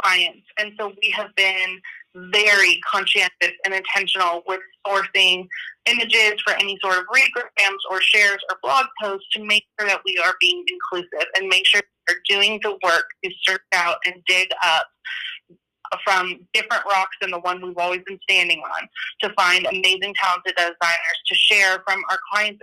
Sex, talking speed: female, 175 wpm